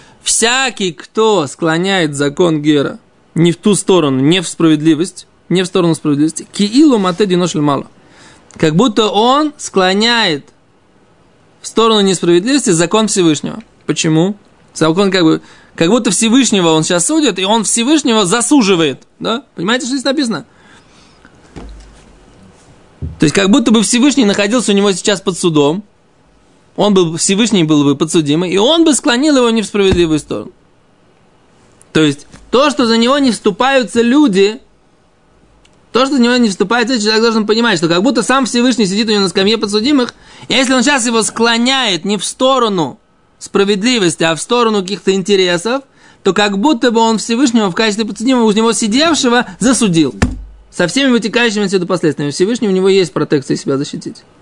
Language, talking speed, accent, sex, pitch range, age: Russian, 160 wpm, native, male, 175-240 Hz, 20-39